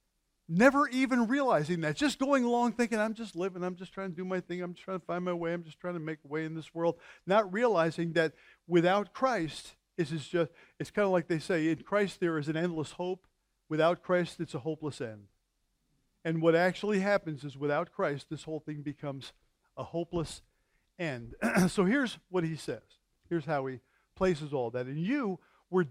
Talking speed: 205 wpm